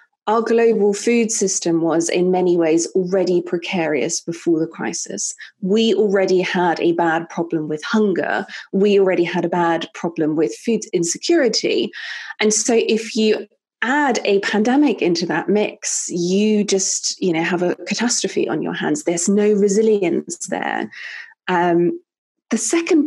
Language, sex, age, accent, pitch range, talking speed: English, female, 20-39, British, 180-230 Hz, 150 wpm